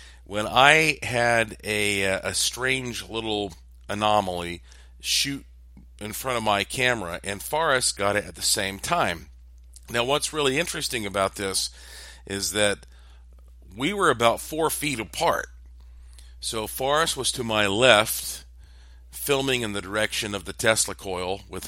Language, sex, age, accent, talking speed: English, male, 50-69, American, 140 wpm